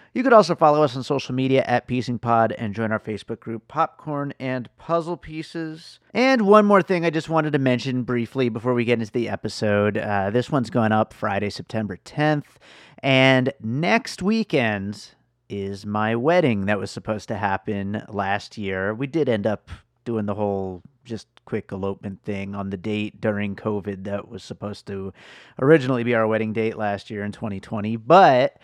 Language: English